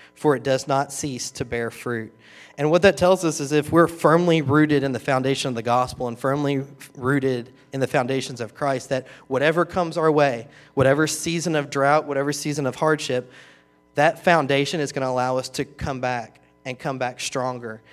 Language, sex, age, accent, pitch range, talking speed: English, male, 30-49, American, 120-140 Hz, 200 wpm